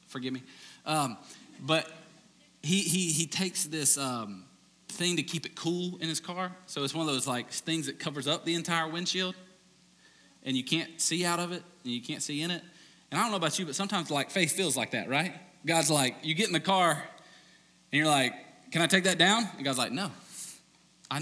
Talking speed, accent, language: 225 wpm, American, English